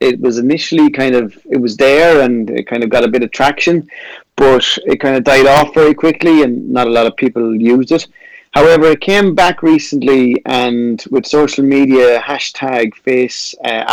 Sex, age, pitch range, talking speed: male, 30-49, 110-140 Hz, 195 wpm